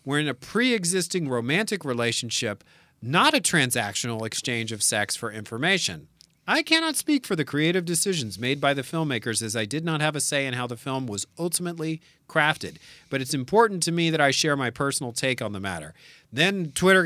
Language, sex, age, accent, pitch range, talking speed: English, male, 40-59, American, 115-160 Hz, 195 wpm